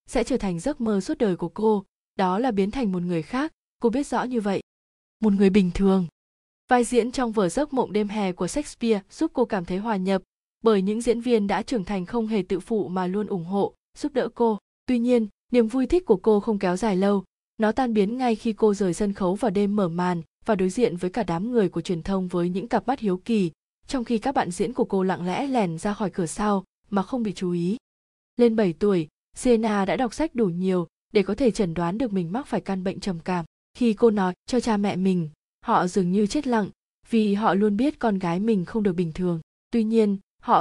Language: Vietnamese